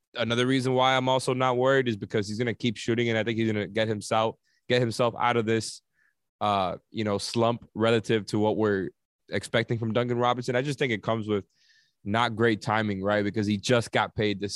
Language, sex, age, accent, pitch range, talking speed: English, male, 20-39, American, 110-135 Hz, 225 wpm